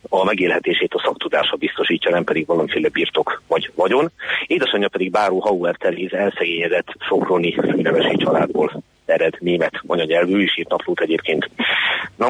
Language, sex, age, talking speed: Hungarian, male, 40-59, 130 wpm